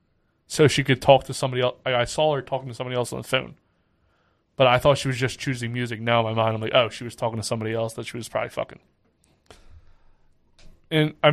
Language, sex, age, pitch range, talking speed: English, male, 20-39, 115-145 Hz, 245 wpm